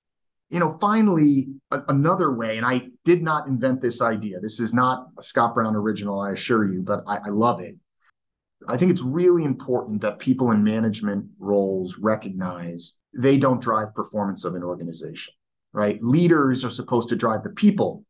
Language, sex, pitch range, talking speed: English, male, 110-140 Hz, 175 wpm